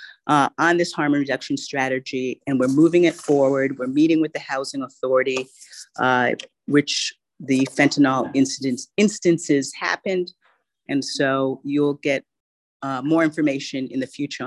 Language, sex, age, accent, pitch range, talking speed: English, female, 40-59, American, 140-185 Hz, 135 wpm